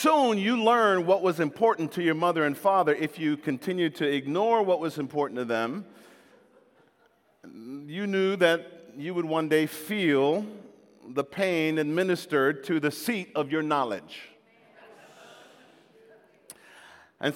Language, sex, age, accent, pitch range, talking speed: English, male, 40-59, American, 135-170 Hz, 135 wpm